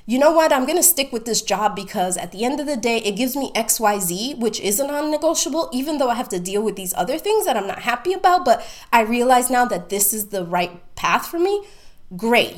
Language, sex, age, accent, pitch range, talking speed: English, female, 20-39, American, 190-265 Hz, 255 wpm